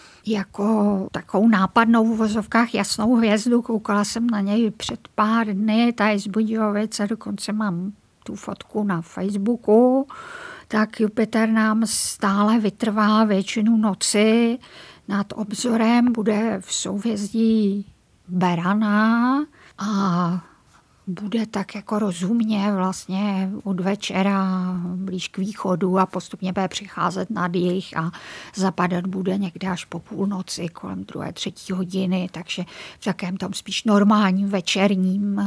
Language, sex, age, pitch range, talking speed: Czech, female, 50-69, 185-215 Hz, 120 wpm